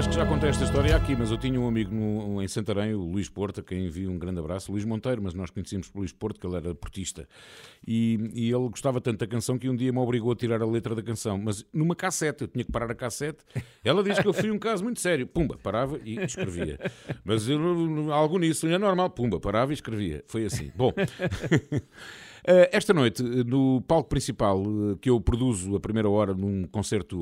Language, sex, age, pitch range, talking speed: Portuguese, male, 50-69, 105-130 Hz, 225 wpm